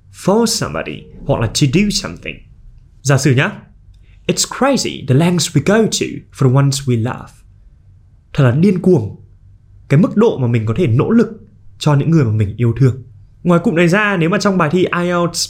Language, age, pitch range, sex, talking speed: Vietnamese, 20-39, 120-175 Hz, male, 200 wpm